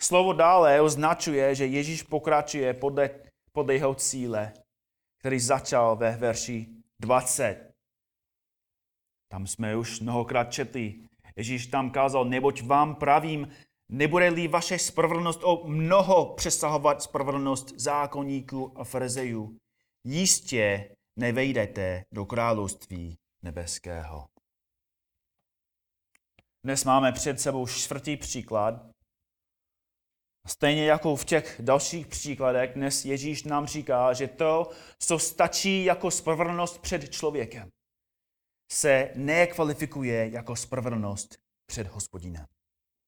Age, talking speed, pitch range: 30-49, 100 wpm, 115-155 Hz